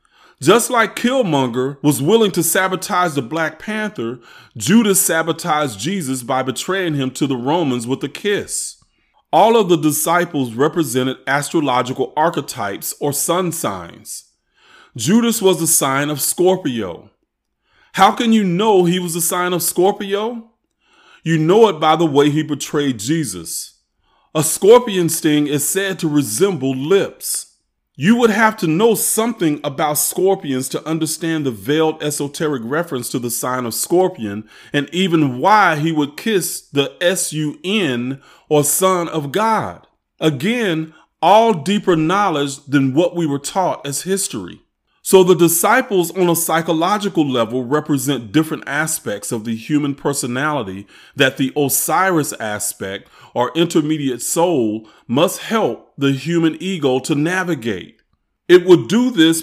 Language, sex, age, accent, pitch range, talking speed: English, male, 30-49, American, 140-185 Hz, 140 wpm